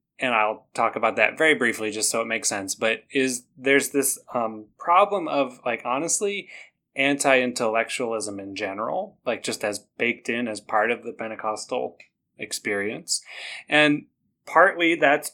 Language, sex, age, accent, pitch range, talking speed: English, male, 20-39, American, 110-135 Hz, 150 wpm